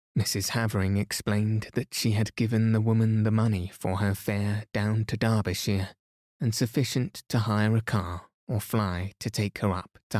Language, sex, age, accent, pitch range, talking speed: English, male, 20-39, British, 100-110 Hz, 175 wpm